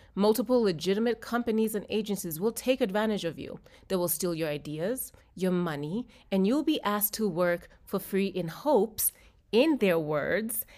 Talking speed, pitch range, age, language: 165 wpm, 170-220 Hz, 30-49, English